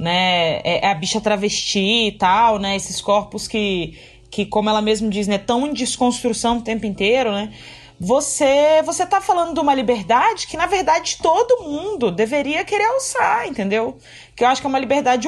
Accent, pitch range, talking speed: Brazilian, 210-285 Hz, 185 wpm